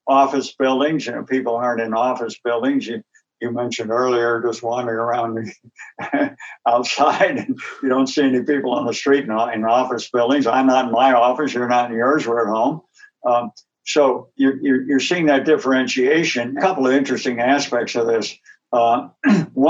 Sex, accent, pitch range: male, American, 115-135 Hz